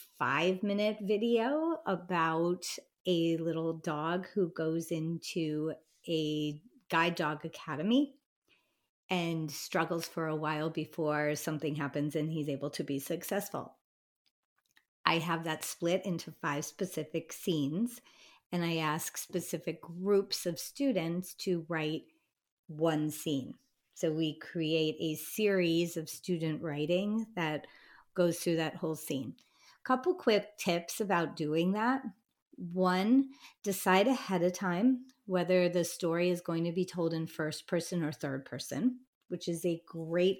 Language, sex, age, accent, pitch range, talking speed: English, female, 30-49, American, 160-200 Hz, 130 wpm